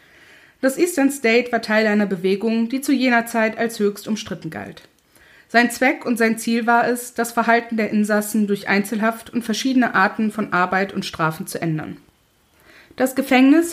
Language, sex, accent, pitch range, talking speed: German, female, German, 195-235 Hz, 170 wpm